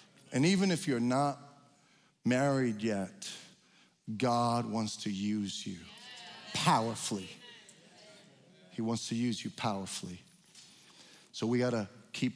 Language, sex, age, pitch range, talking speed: English, male, 40-59, 120-170 Hz, 110 wpm